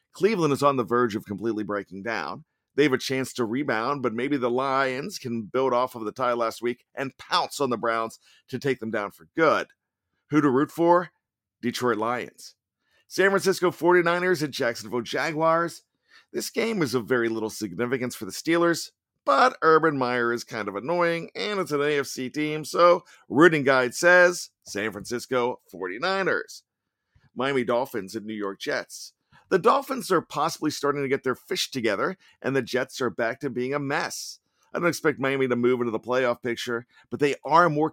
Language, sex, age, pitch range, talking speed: English, male, 50-69, 120-165 Hz, 185 wpm